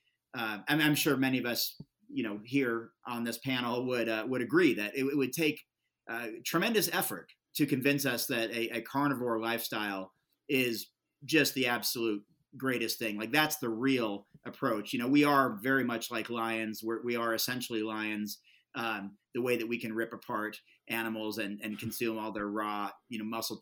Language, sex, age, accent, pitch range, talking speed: English, male, 30-49, American, 110-140 Hz, 190 wpm